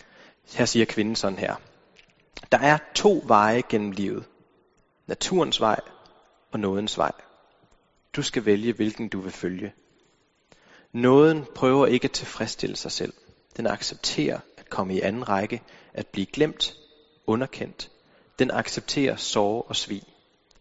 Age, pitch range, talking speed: 30-49, 105-140 Hz, 135 wpm